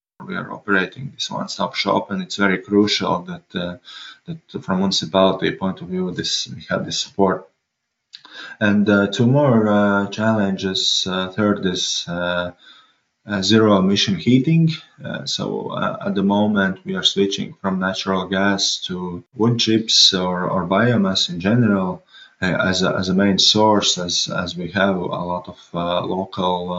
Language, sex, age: English, male, 20-39